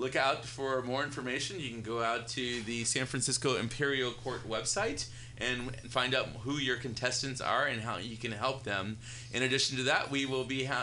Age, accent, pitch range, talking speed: 30-49, American, 115-130 Hz, 205 wpm